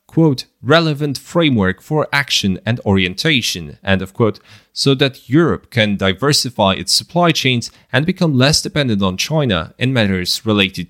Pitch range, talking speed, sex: 95-140 Hz, 150 wpm, male